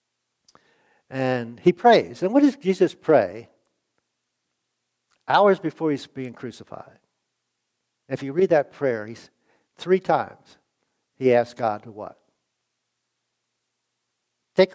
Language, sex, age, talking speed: English, male, 60-79, 115 wpm